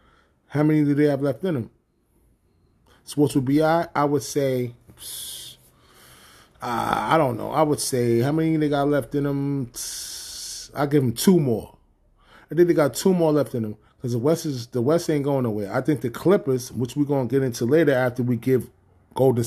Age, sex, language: 30-49, male, English